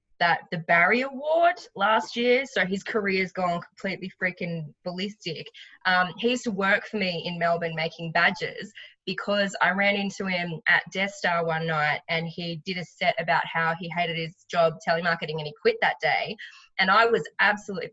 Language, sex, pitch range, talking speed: English, female, 165-205 Hz, 185 wpm